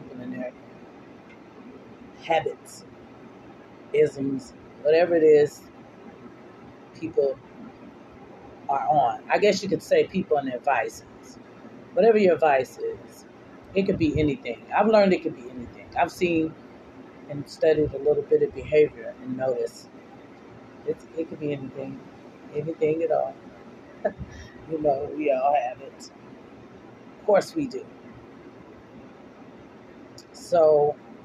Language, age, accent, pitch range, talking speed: English, 40-59, American, 150-210 Hz, 120 wpm